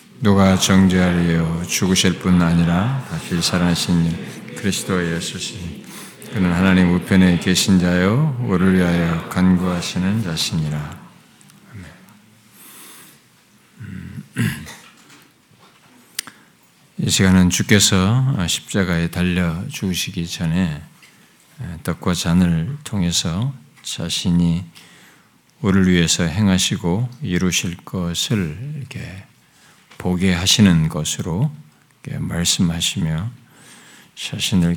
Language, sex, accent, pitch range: Korean, male, native, 85-100 Hz